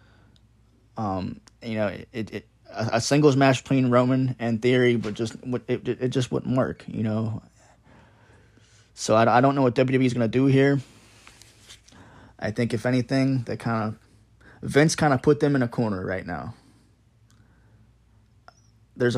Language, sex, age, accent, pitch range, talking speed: English, male, 20-39, American, 110-130 Hz, 165 wpm